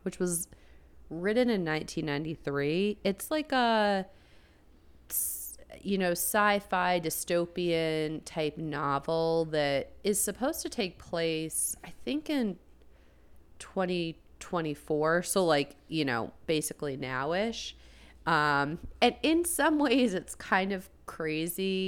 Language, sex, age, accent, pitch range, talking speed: English, female, 30-49, American, 135-180 Hz, 110 wpm